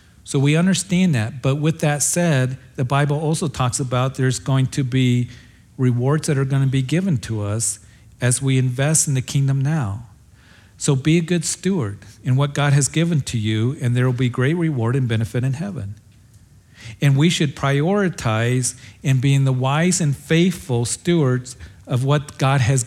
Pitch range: 115-145 Hz